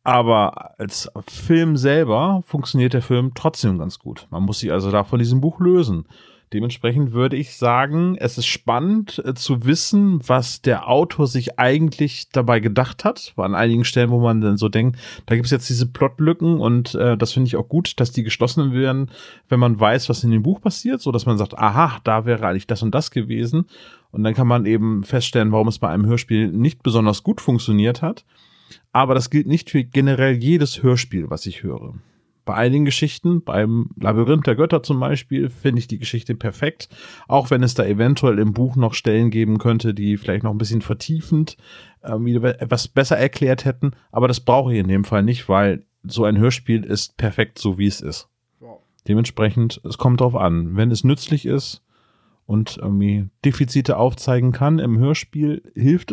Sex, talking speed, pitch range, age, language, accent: male, 195 wpm, 110-140 Hz, 30-49, German, German